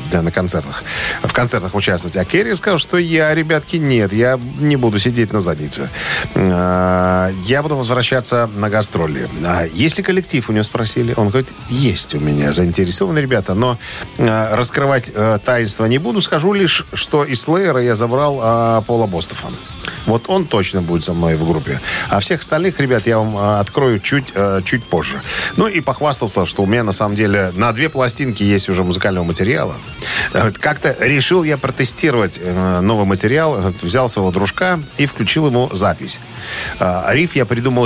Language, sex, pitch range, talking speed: Russian, male, 95-135 Hz, 160 wpm